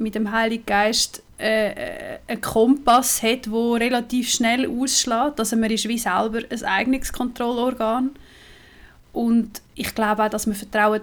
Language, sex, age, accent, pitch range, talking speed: German, female, 20-39, Swiss, 225-265 Hz, 150 wpm